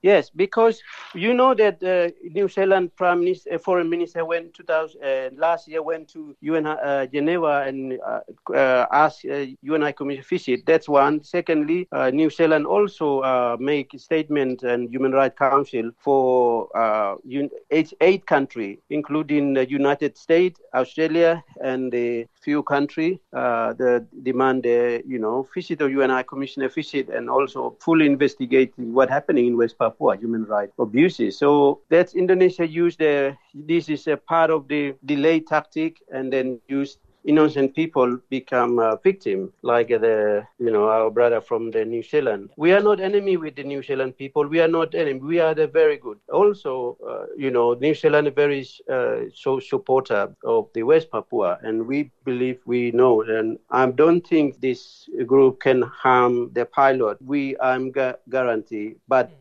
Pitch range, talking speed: 130-165 Hz, 170 wpm